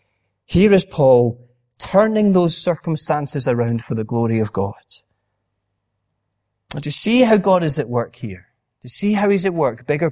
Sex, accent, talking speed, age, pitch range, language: male, British, 165 wpm, 30-49, 105-160 Hz, English